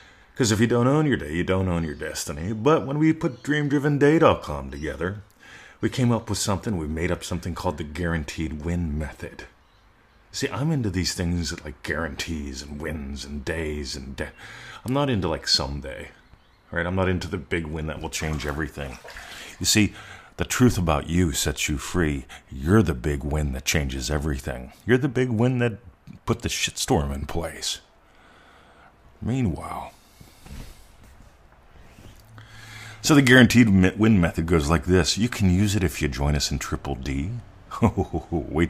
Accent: American